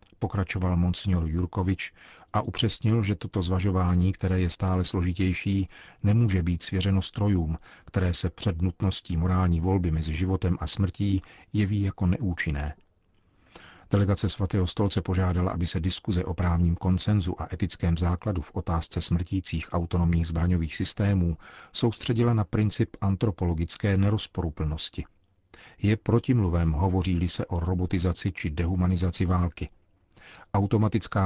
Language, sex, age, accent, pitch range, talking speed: Czech, male, 40-59, native, 90-100 Hz, 120 wpm